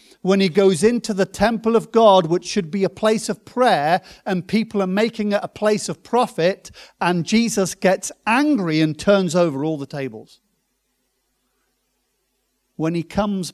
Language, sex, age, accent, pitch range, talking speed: English, male, 50-69, British, 155-210 Hz, 165 wpm